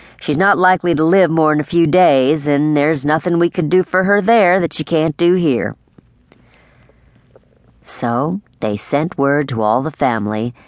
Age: 50-69